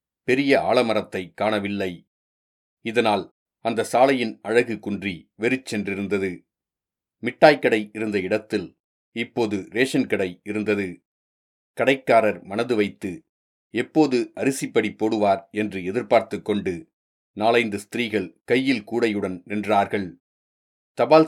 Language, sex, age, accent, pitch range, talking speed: Tamil, male, 40-59, native, 100-120 Hz, 85 wpm